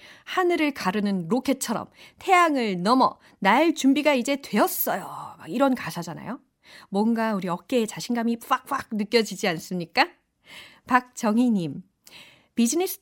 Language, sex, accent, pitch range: Korean, female, native, 190-270 Hz